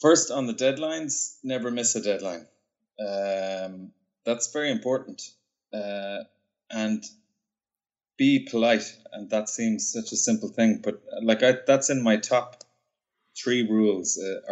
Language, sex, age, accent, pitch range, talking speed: English, male, 20-39, Irish, 105-120 Hz, 135 wpm